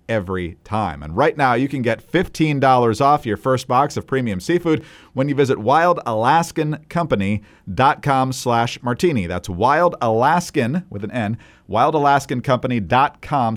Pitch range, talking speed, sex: 110-150 Hz, 130 wpm, male